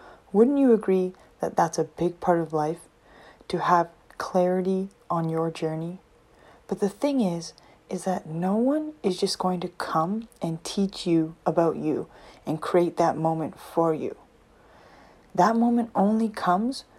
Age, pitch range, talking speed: 20-39, 170-215 Hz, 155 wpm